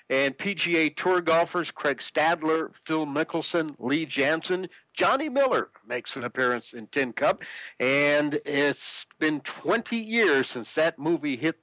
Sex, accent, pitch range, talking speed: male, American, 140-185 Hz, 140 wpm